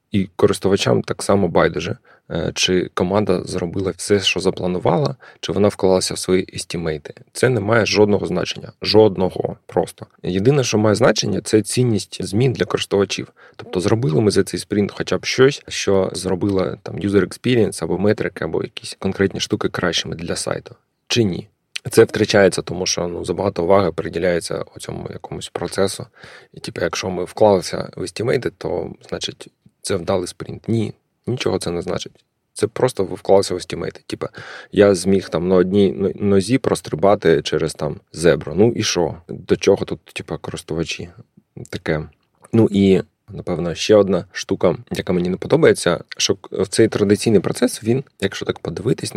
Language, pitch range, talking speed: Ukrainian, 95-110 Hz, 160 wpm